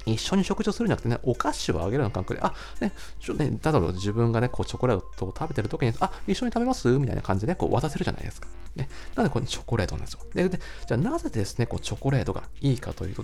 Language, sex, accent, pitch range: Japanese, male, native, 100-155 Hz